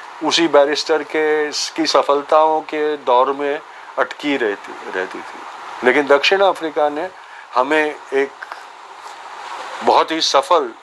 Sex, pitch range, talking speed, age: male, 145-180 Hz, 115 wpm, 50-69